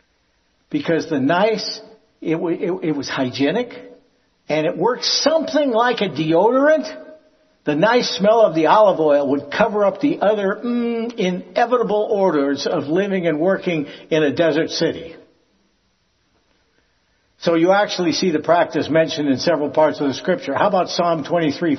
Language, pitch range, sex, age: English, 160-220 Hz, male, 60-79